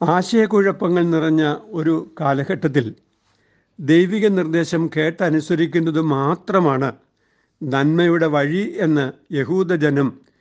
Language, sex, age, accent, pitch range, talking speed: Malayalam, male, 60-79, native, 140-170 Hz, 70 wpm